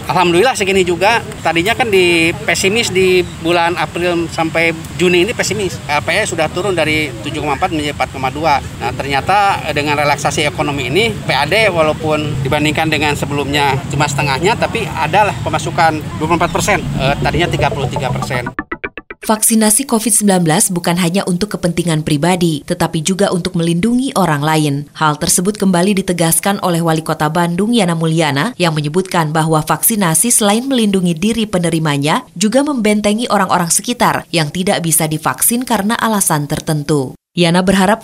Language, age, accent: Indonesian, 20-39, native